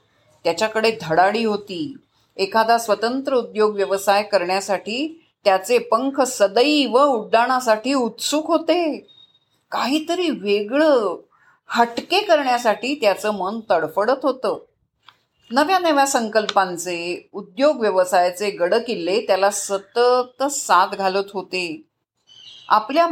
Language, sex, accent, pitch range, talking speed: Marathi, female, native, 195-270 Hz, 90 wpm